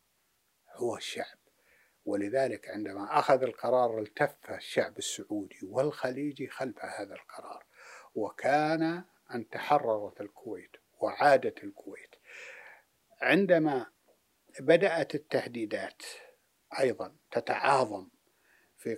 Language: Arabic